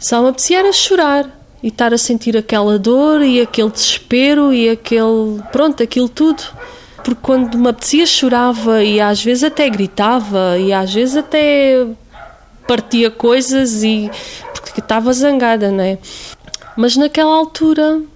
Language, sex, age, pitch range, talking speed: Portuguese, female, 20-39, 225-290 Hz, 140 wpm